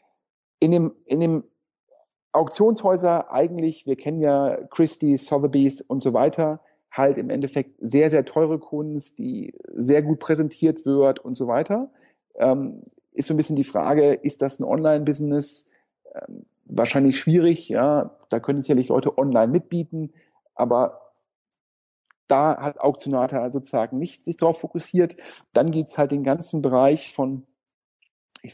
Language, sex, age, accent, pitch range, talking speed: German, male, 40-59, German, 135-165 Hz, 145 wpm